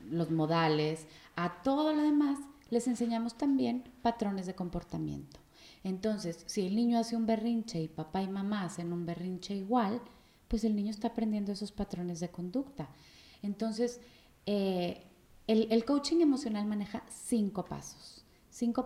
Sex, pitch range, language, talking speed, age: female, 175-230 Hz, Spanish, 145 wpm, 30-49